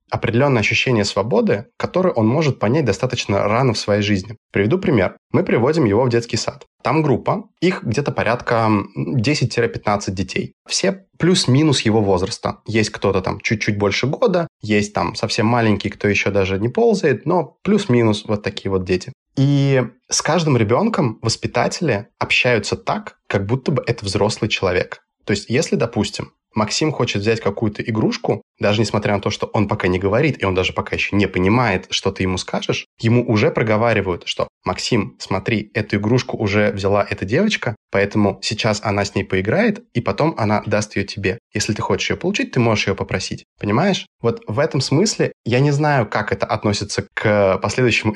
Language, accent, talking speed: Russian, native, 175 wpm